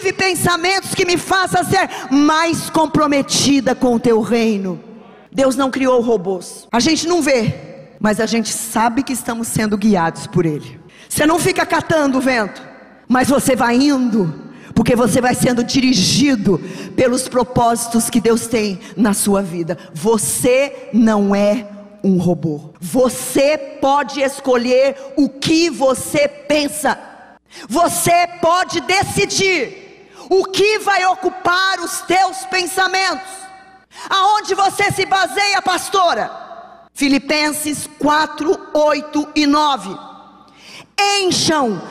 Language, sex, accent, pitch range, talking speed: Portuguese, female, Brazilian, 245-370 Hz, 120 wpm